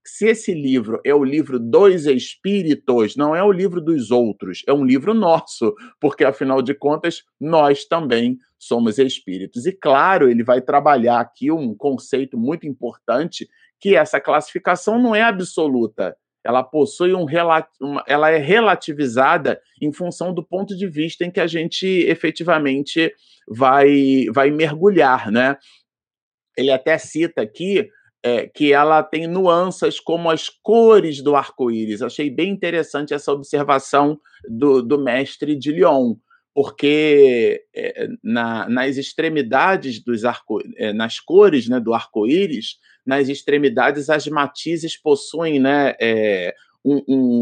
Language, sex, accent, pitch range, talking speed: Portuguese, male, Brazilian, 135-175 Hz, 140 wpm